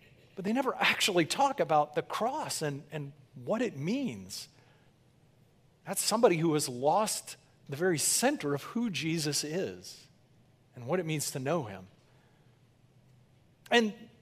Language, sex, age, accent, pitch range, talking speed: English, male, 40-59, American, 140-200 Hz, 140 wpm